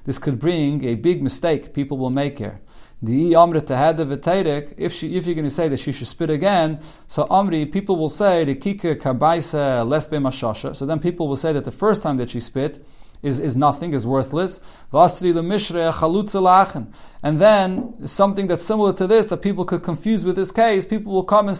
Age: 40-59